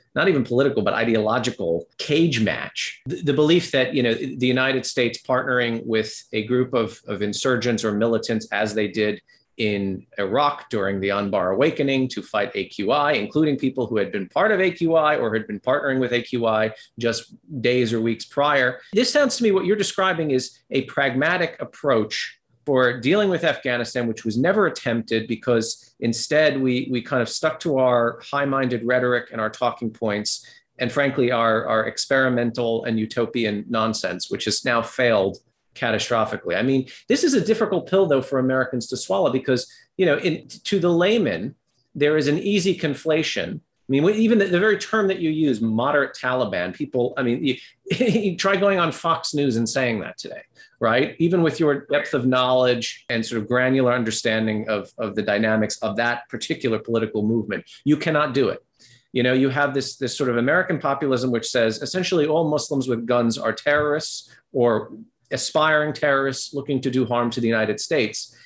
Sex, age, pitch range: male, 40-59, 115-150 Hz